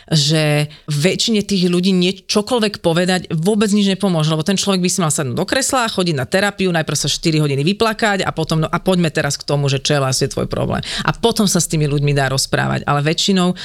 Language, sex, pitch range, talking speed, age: Slovak, female, 150-195 Hz, 225 wpm, 30-49